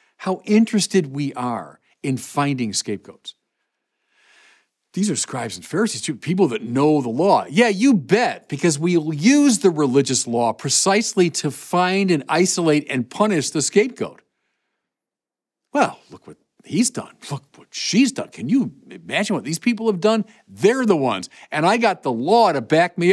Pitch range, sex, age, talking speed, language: 140-205 Hz, male, 50-69, 165 wpm, English